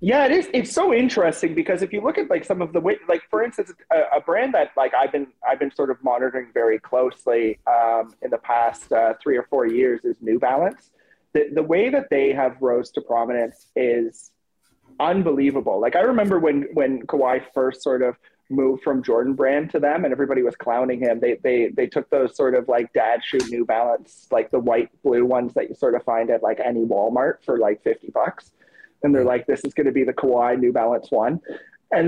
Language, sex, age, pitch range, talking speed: English, male, 30-49, 125-195 Hz, 225 wpm